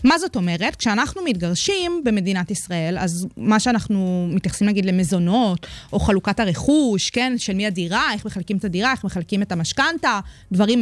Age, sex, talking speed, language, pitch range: 20-39, female, 160 wpm, Hebrew, 200-280 Hz